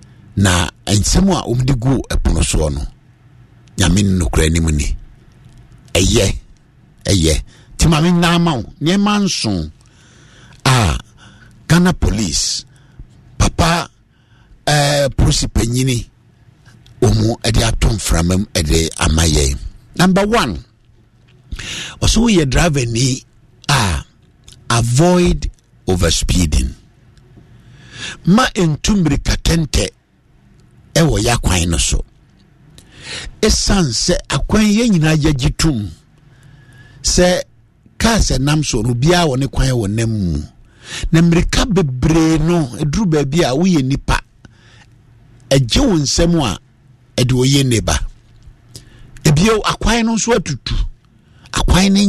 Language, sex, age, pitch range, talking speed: English, male, 60-79, 115-160 Hz, 80 wpm